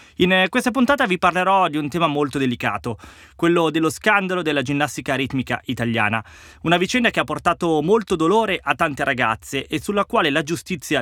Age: 20-39